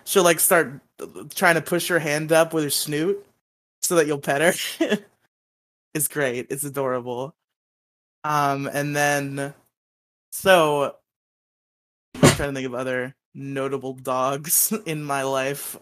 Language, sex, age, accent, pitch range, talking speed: English, male, 20-39, American, 135-155 Hz, 135 wpm